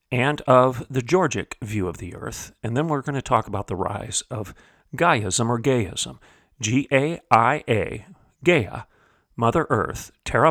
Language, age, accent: English, 40-59, American